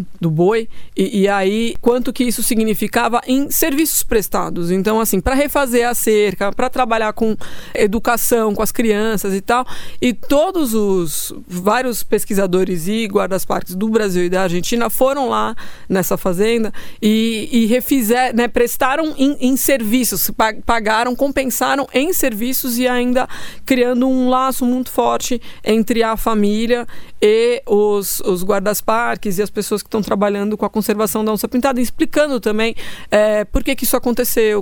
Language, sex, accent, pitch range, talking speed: Portuguese, female, Brazilian, 200-250 Hz, 150 wpm